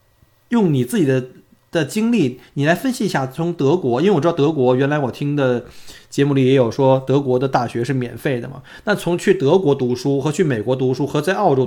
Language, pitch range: Chinese, 120-150 Hz